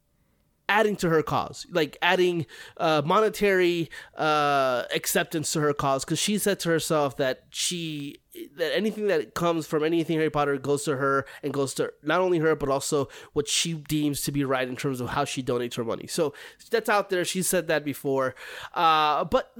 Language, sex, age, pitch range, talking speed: English, male, 30-49, 145-195 Hz, 195 wpm